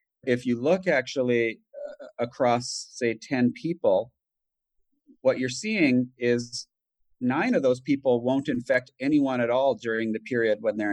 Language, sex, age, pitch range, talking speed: English, male, 40-59, 110-135 Hz, 150 wpm